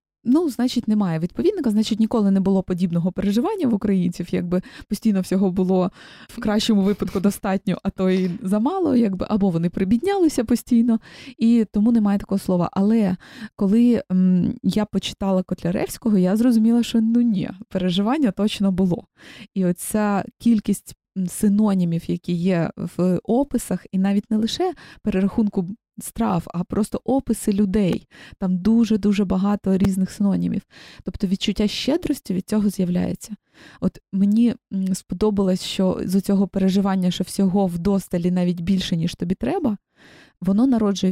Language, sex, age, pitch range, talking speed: Ukrainian, female, 20-39, 190-225 Hz, 135 wpm